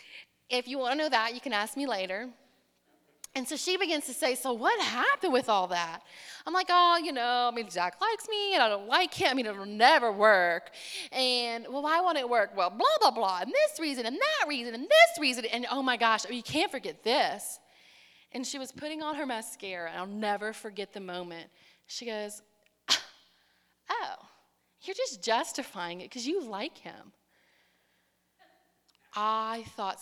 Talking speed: 190 wpm